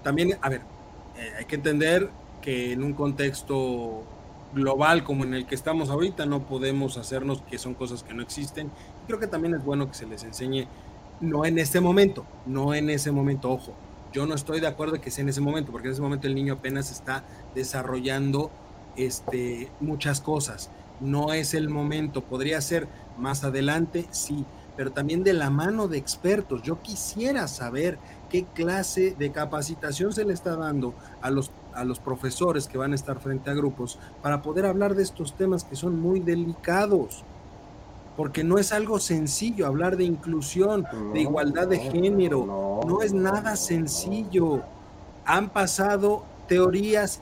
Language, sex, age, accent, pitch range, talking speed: Spanish, male, 30-49, Mexican, 135-180 Hz, 170 wpm